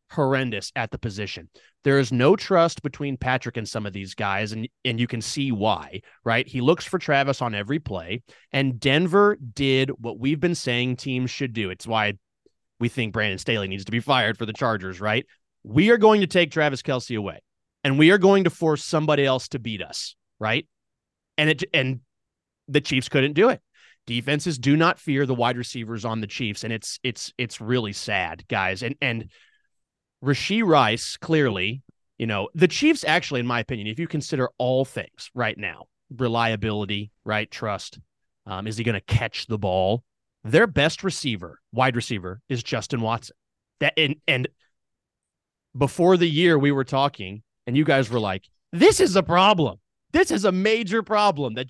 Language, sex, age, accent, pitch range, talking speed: English, male, 30-49, American, 110-150 Hz, 185 wpm